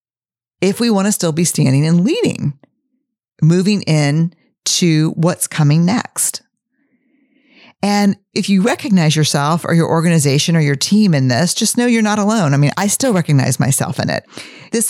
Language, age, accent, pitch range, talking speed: English, 40-59, American, 150-200 Hz, 170 wpm